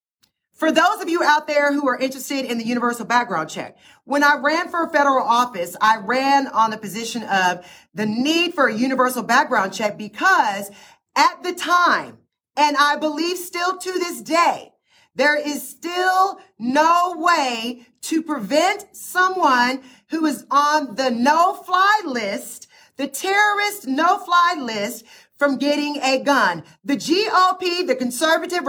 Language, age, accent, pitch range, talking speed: English, 40-59, American, 260-350 Hz, 150 wpm